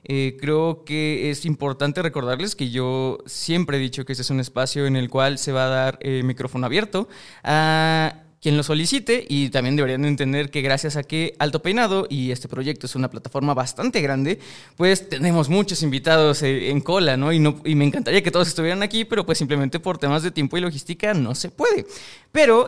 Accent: Mexican